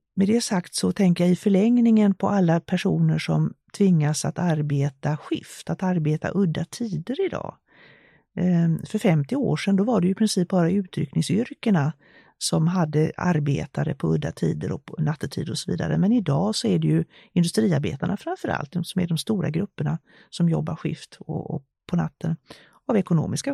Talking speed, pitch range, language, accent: 170 wpm, 160-195 Hz, English, Swedish